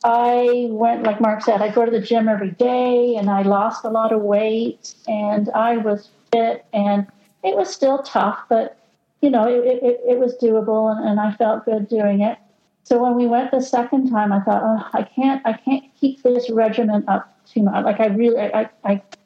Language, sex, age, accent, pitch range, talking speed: English, female, 50-69, American, 200-235 Hz, 210 wpm